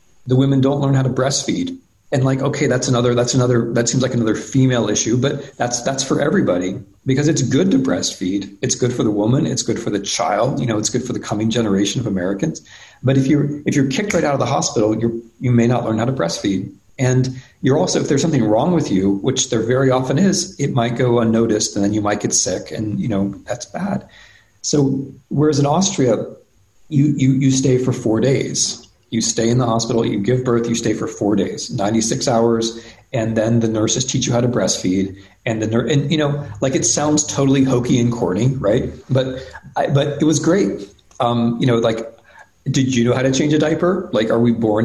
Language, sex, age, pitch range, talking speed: English, male, 40-59, 115-135 Hz, 225 wpm